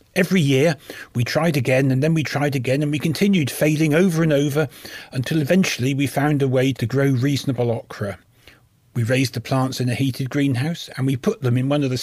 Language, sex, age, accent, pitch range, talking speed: English, male, 40-59, British, 125-155 Hz, 215 wpm